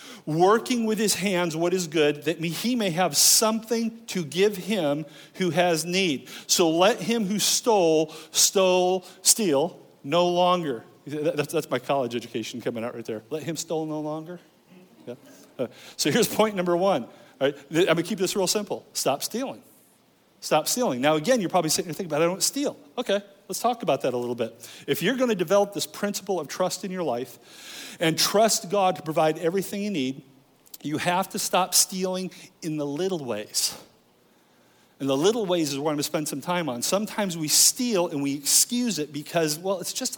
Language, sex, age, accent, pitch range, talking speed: English, male, 40-59, American, 155-195 Hz, 195 wpm